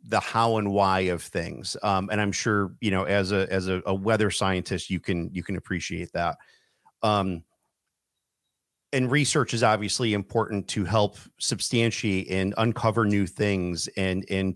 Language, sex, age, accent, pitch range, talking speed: English, male, 40-59, American, 95-120 Hz, 165 wpm